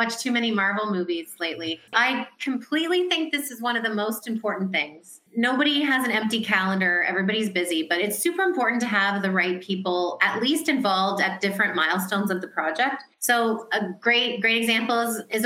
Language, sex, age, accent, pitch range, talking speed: English, female, 30-49, American, 185-235 Hz, 190 wpm